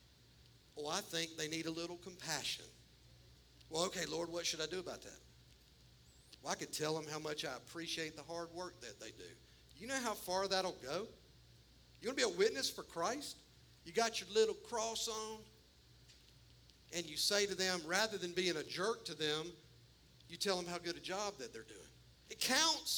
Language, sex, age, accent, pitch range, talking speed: English, male, 50-69, American, 170-230 Hz, 200 wpm